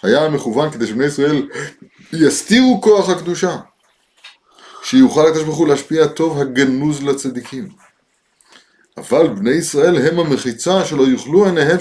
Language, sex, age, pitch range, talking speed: Hebrew, male, 30-49, 130-170 Hz, 120 wpm